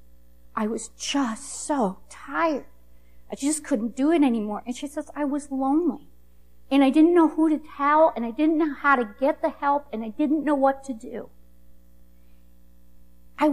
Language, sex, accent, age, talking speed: English, female, American, 50-69, 180 wpm